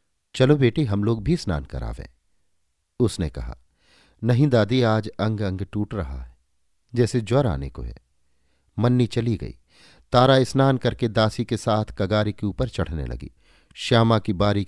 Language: Hindi